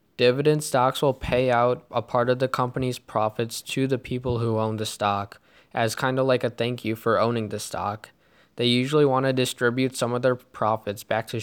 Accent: American